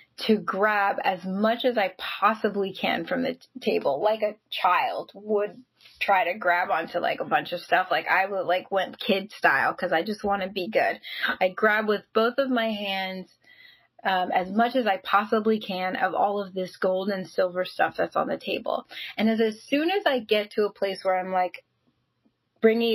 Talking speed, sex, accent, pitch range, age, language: 205 wpm, female, American, 190-225 Hz, 10-29, English